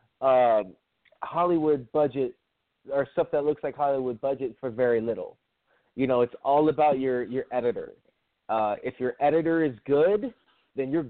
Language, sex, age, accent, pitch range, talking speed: English, male, 30-49, American, 125-155 Hz, 155 wpm